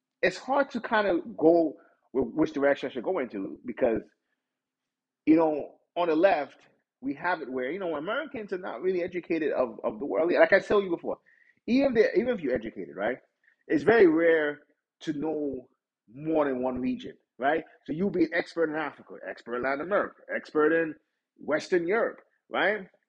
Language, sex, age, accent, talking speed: English, male, 30-49, American, 185 wpm